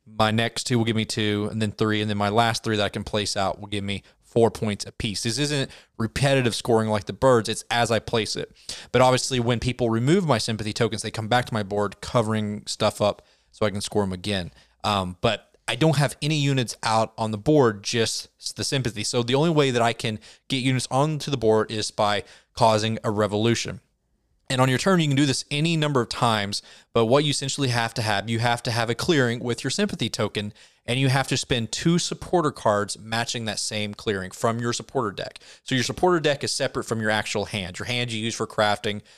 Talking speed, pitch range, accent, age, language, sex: 235 wpm, 105-130 Hz, American, 20-39, English, male